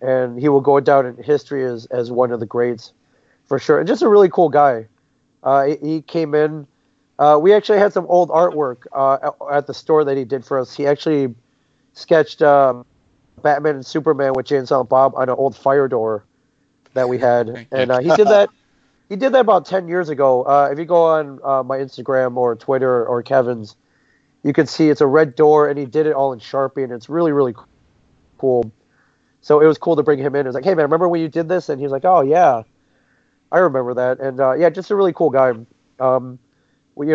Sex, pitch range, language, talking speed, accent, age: male, 130-155 Hz, English, 230 wpm, American, 30-49